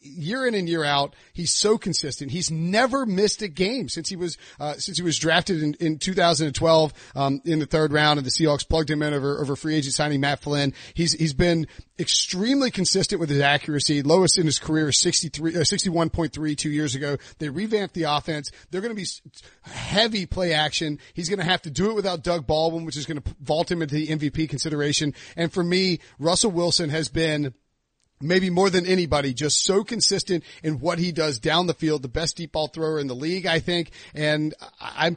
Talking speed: 210 wpm